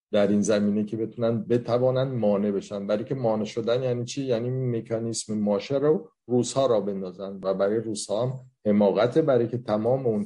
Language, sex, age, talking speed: Persian, male, 50-69, 175 wpm